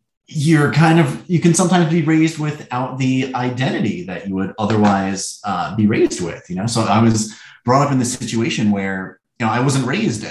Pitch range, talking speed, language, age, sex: 100-135 Hz, 205 wpm, English, 30-49, male